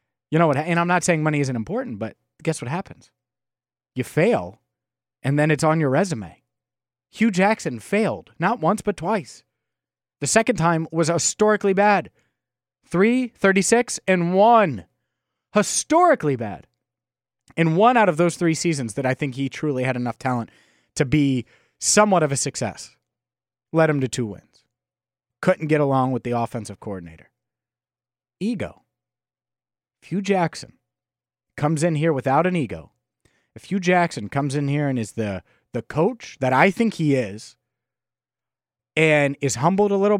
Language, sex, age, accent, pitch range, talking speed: English, male, 30-49, American, 120-175 Hz, 155 wpm